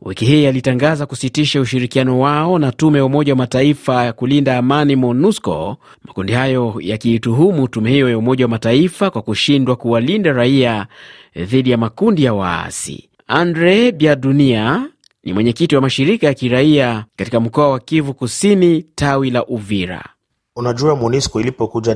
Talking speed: 140 wpm